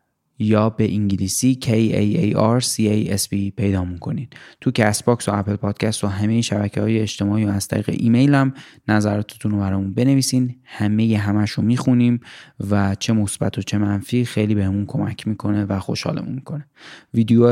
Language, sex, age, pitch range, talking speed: Persian, male, 20-39, 100-115 Hz, 170 wpm